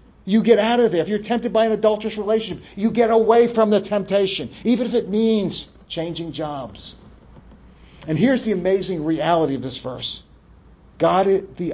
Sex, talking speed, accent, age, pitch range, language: male, 175 wpm, American, 50-69, 155-210 Hz, English